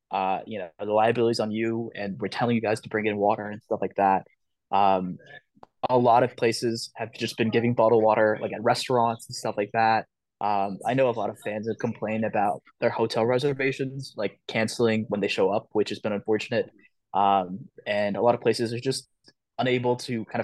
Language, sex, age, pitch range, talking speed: English, male, 20-39, 105-125 Hz, 210 wpm